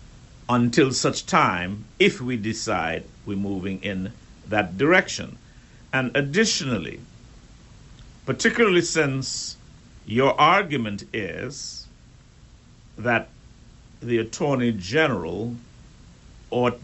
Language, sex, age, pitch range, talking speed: English, male, 60-79, 100-130 Hz, 80 wpm